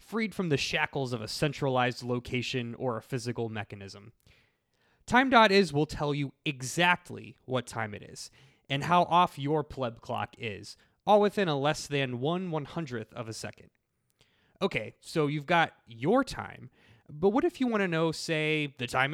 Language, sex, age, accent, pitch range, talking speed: English, male, 20-39, American, 125-165 Hz, 170 wpm